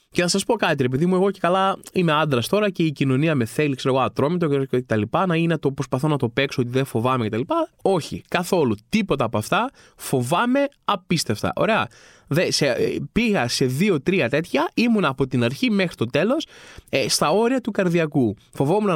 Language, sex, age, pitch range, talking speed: Greek, male, 20-39, 140-210 Hz, 185 wpm